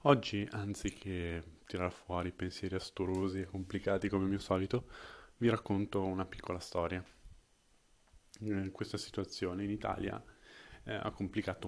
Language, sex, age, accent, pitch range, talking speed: Italian, male, 30-49, native, 90-100 Hz, 115 wpm